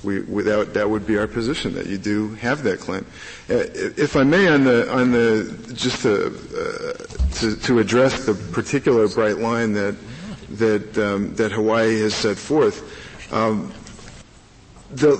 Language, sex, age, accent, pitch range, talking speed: English, male, 50-69, American, 110-135 Hz, 160 wpm